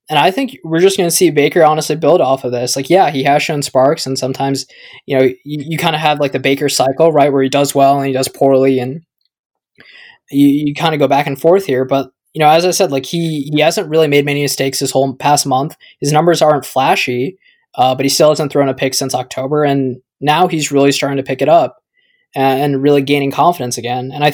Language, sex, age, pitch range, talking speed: English, male, 20-39, 135-160 Hz, 250 wpm